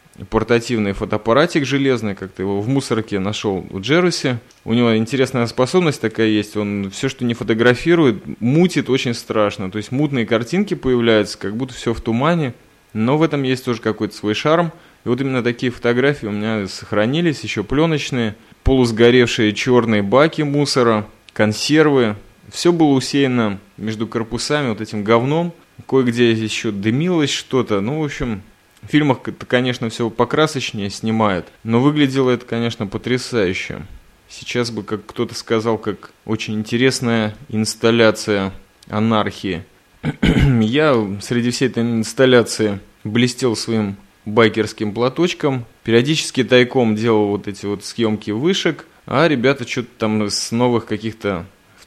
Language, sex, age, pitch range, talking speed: Russian, male, 20-39, 105-130 Hz, 140 wpm